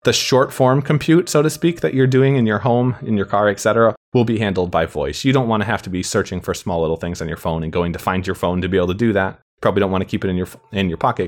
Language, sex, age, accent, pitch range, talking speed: English, male, 20-39, American, 85-110 Hz, 320 wpm